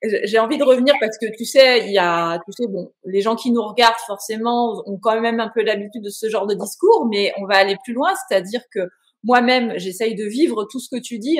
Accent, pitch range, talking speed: French, 205-280 Hz, 255 wpm